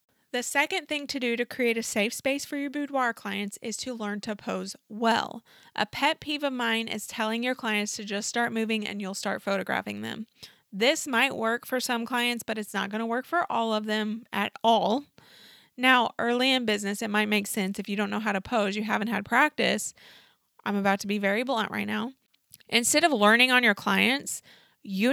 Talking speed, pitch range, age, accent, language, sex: 215 wpm, 205-250 Hz, 20-39, American, English, female